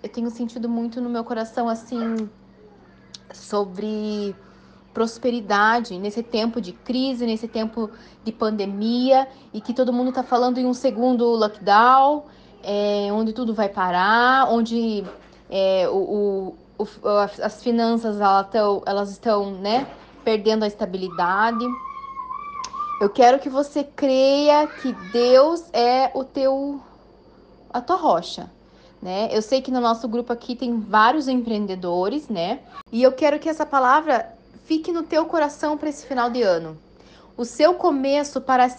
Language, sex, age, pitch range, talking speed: Portuguese, female, 20-39, 220-265 Hz, 135 wpm